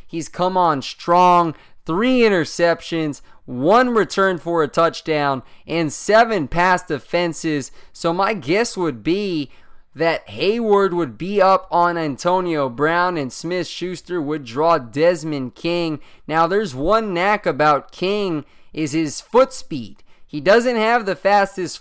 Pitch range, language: 155-195 Hz, English